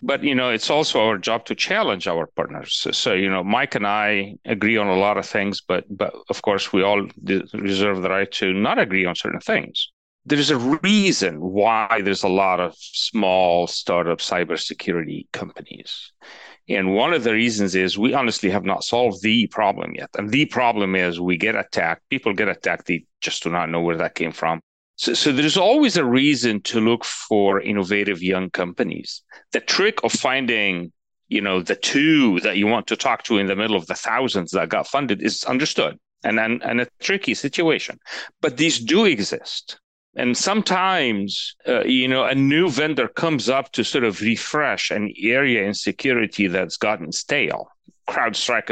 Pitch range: 95-125 Hz